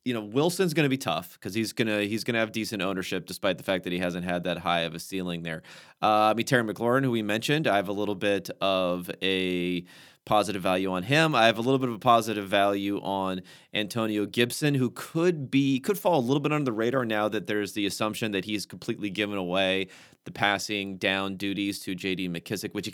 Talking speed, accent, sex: 235 wpm, American, male